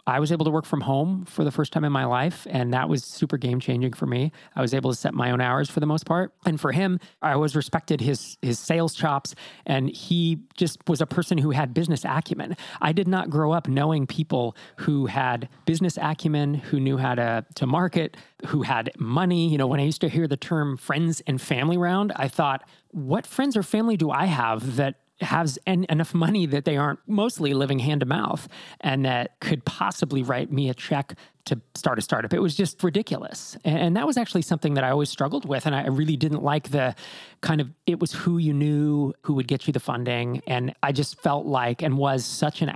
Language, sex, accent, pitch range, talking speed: English, male, American, 135-165 Hz, 230 wpm